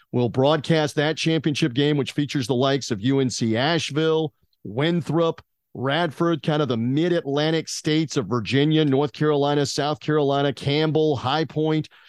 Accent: American